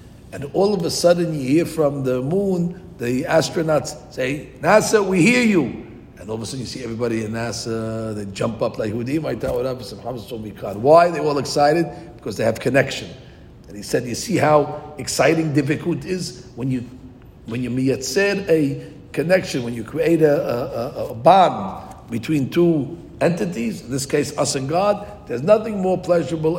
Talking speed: 190 wpm